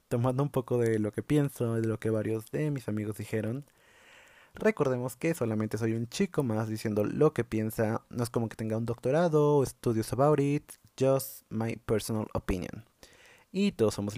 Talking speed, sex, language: 185 wpm, male, Spanish